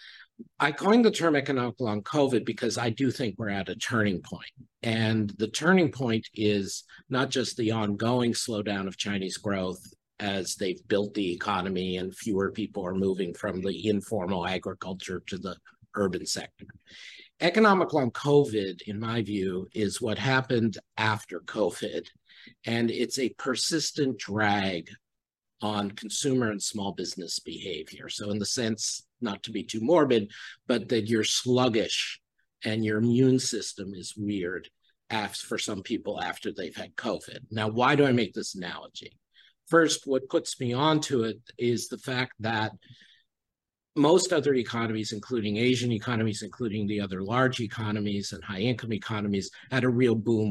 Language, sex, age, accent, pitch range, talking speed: English, male, 50-69, American, 105-125 Hz, 155 wpm